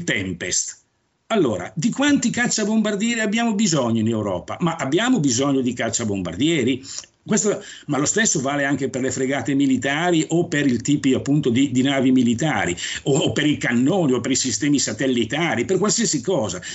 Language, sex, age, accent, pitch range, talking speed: Italian, male, 50-69, native, 140-200 Hz, 165 wpm